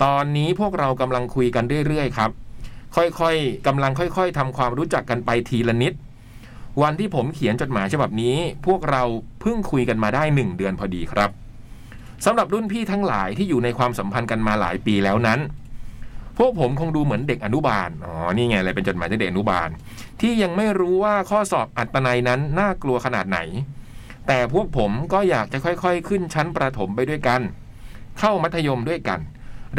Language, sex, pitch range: Thai, male, 115-160 Hz